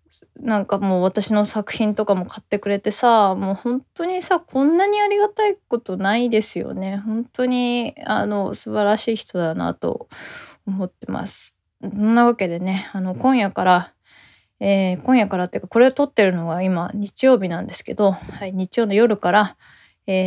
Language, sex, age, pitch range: Japanese, female, 20-39, 185-240 Hz